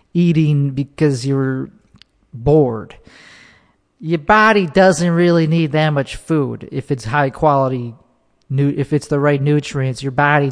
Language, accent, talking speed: English, American, 130 wpm